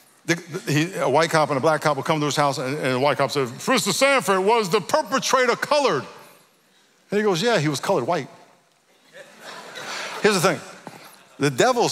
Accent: American